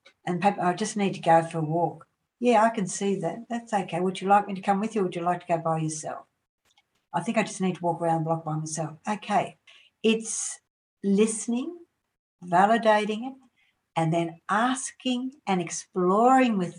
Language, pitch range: English, 165-210 Hz